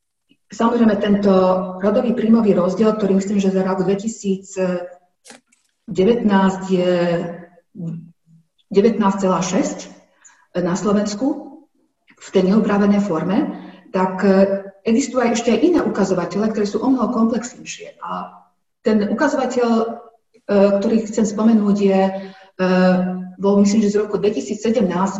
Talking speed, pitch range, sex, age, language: 105 wpm, 185-225 Hz, female, 40-59, Slovak